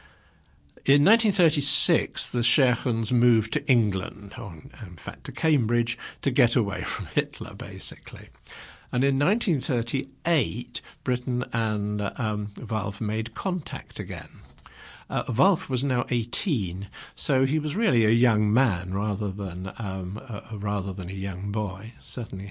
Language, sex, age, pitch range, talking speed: English, male, 60-79, 100-135 Hz, 135 wpm